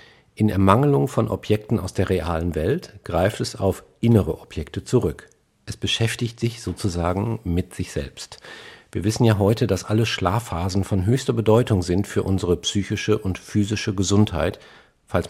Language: German